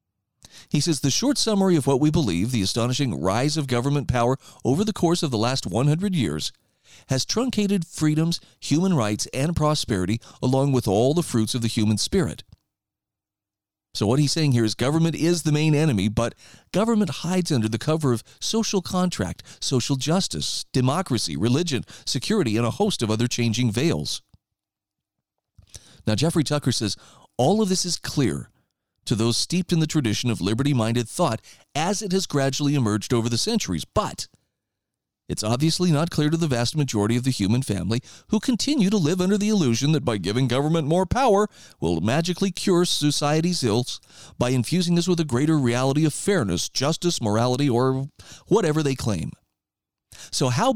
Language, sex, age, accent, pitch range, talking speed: English, male, 40-59, American, 115-170 Hz, 170 wpm